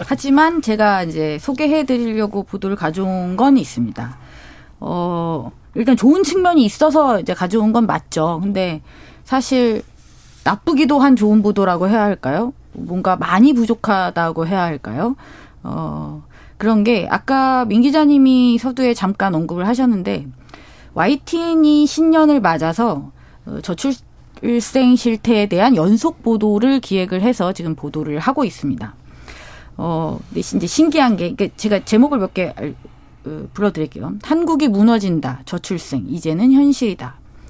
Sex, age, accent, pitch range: female, 30-49, native, 175-260 Hz